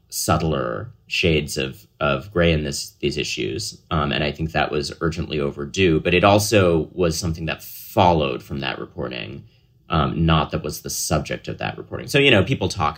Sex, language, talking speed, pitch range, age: male, English, 190 wpm, 75-90 Hz, 30-49